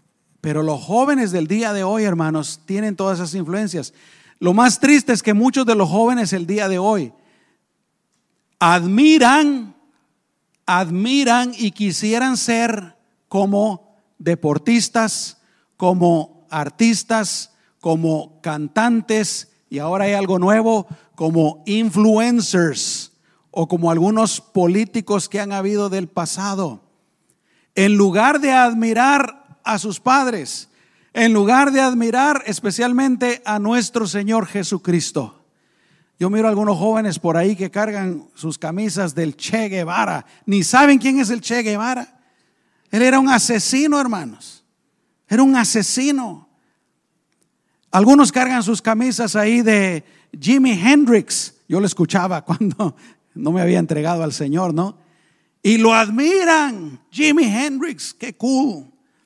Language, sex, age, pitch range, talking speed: Spanish, male, 50-69, 180-235 Hz, 125 wpm